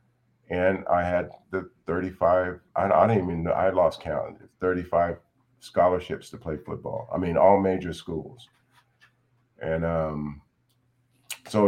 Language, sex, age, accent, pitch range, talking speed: English, male, 40-59, American, 85-115 Hz, 135 wpm